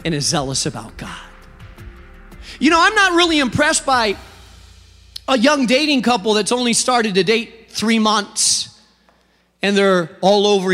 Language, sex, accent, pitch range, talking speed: English, male, American, 170-265 Hz, 150 wpm